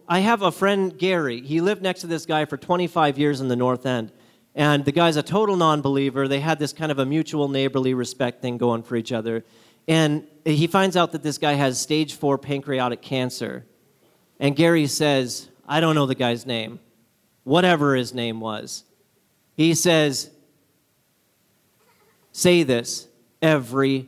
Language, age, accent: English, 40-59, American